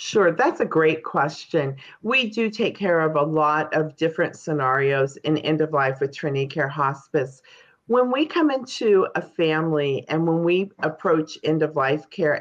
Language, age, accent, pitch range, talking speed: English, 40-59, American, 150-200 Hz, 180 wpm